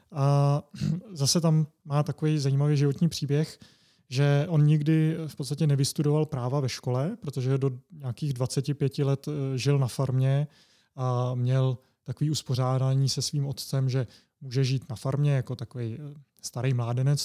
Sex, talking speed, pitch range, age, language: male, 145 wpm, 125-145 Hz, 30-49, Czech